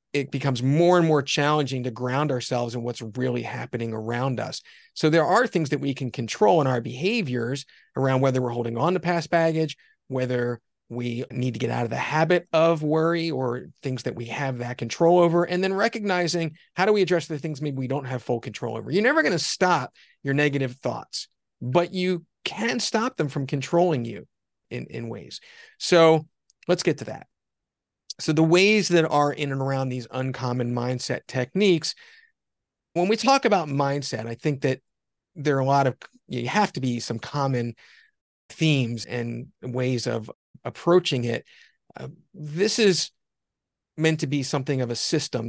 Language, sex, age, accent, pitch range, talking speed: English, male, 40-59, American, 125-170 Hz, 185 wpm